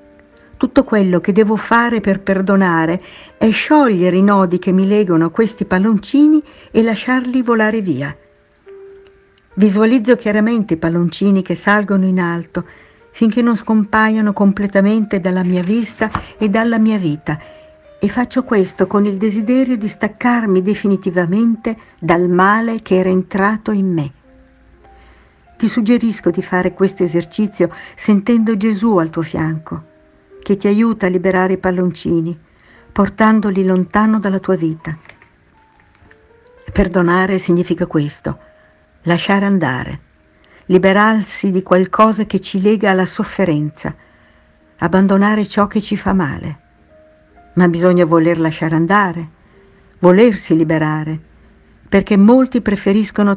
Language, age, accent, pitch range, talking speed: Italian, 60-79, native, 170-220 Hz, 120 wpm